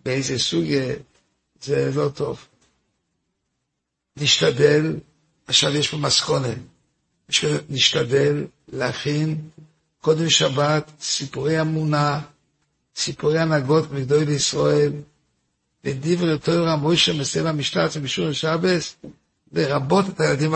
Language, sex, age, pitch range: Hebrew, male, 60-79, 140-165 Hz